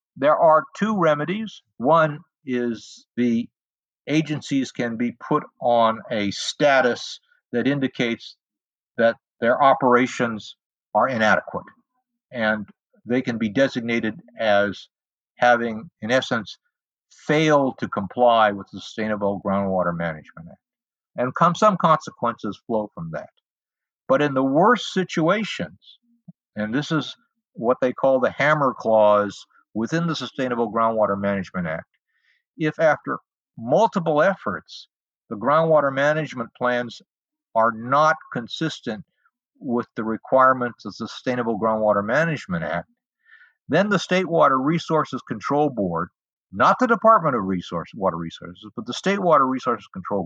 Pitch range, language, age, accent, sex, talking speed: 110-165 Hz, English, 60-79, American, male, 125 wpm